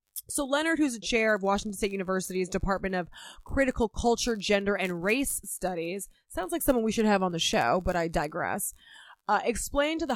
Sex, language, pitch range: female, English, 185-240 Hz